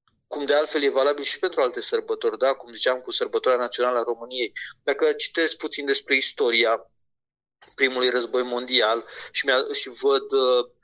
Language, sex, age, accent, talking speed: Romanian, male, 30-49, native, 150 wpm